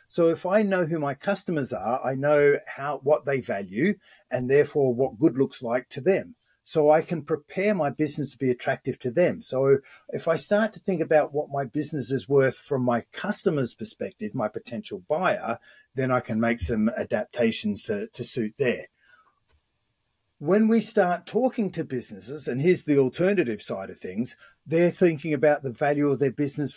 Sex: male